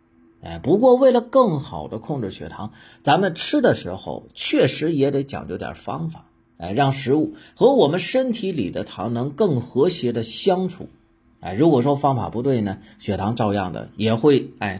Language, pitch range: Chinese, 100-140 Hz